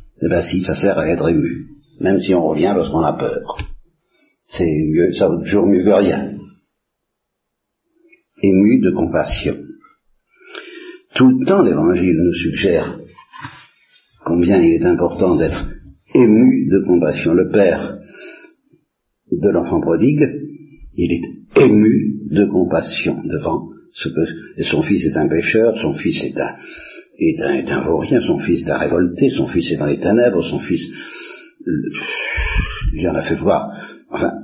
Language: Italian